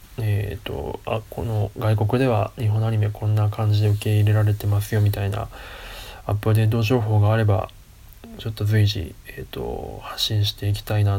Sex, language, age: male, Japanese, 20-39